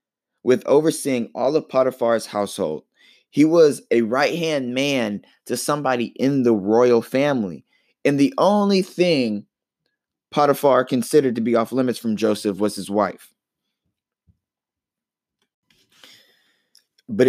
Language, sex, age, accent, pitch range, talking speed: English, male, 20-39, American, 105-140 Hz, 115 wpm